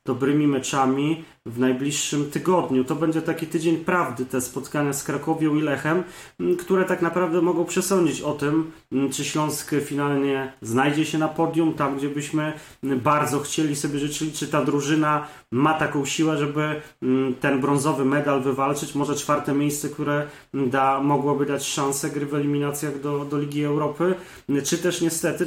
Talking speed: 155 wpm